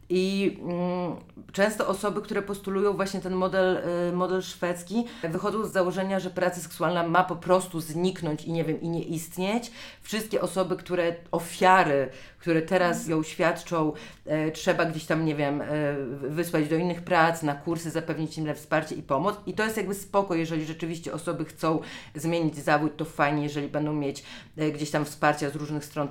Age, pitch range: 30-49, 155-185 Hz